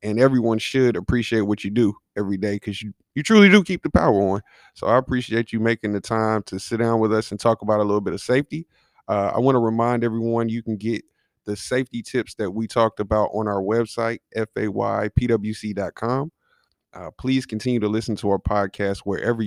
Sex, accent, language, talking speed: male, American, English, 210 wpm